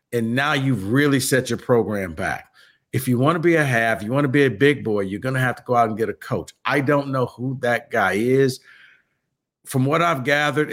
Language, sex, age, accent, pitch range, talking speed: English, male, 50-69, American, 115-145 Hz, 245 wpm